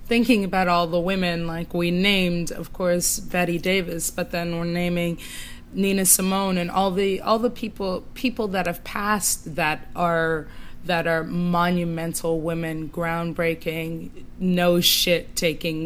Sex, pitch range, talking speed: female, 165-190 Hz, 145 wpm